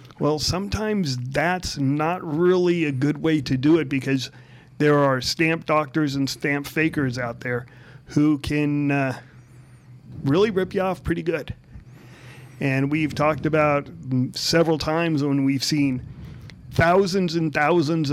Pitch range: 130-155 Hz